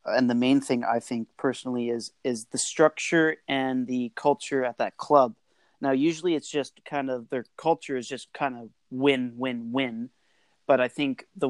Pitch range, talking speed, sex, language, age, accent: 120-140 Hz, 190 wpm, male, English, 30-49, American